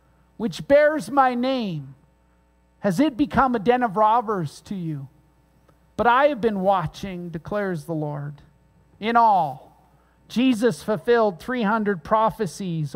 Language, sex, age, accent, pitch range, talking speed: English, male, 50-69, American, 170-245 Hz, 125 wpm